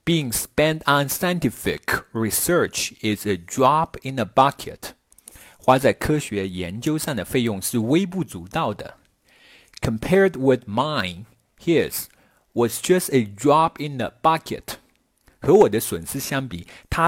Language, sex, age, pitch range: Chinese, male, 50-69, 105-150 Hz